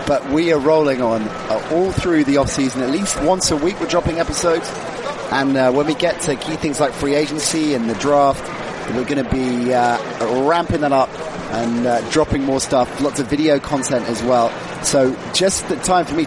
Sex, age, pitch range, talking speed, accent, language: male, 30-49, 125-150 Hz, 210 wpm, British, English